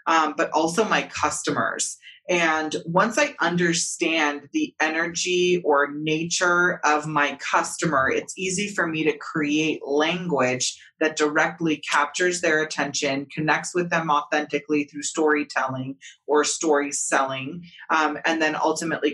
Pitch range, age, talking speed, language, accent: 145-170 Hz, 30-49, 130 wpm, English, American